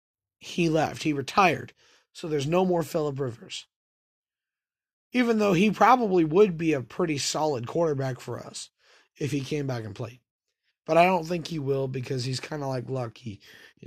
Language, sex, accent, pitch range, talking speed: English, male, American, 130-180 Hz, 175 wpm